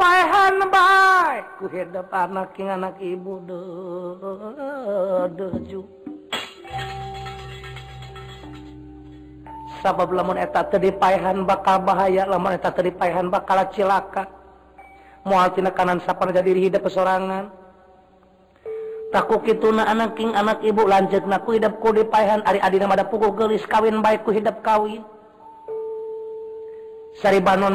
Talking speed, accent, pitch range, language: 95 wpm, native, 185-220 Hz, Indonesian